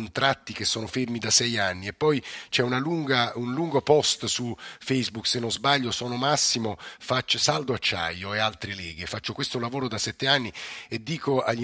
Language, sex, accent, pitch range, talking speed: Italian, male, native, 105-125 Hz, 190 wpm